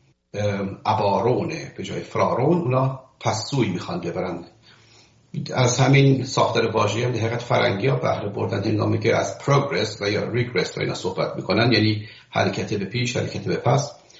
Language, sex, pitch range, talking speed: English, male, 105-135 Hz, 155 wpm